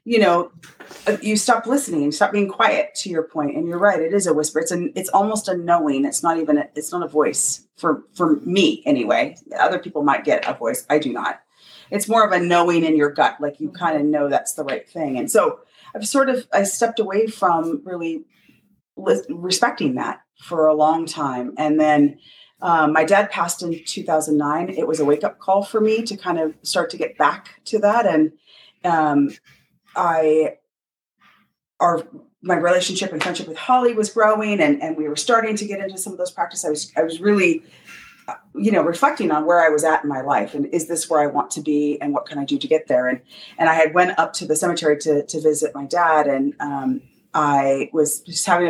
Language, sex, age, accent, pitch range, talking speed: English, female, 30-49, American, 155-205 Hz, 220 wpm